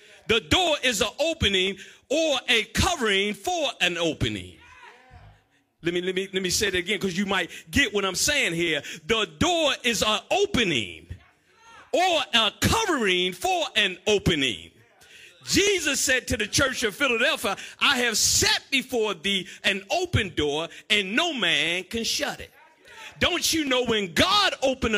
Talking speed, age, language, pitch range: 160 wpm, 50-69, English, 205-295 Hz